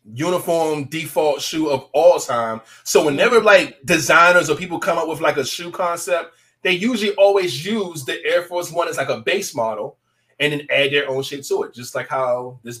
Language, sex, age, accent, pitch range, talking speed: English, male, 20-39, American, 135-205 Hz, 205 wpm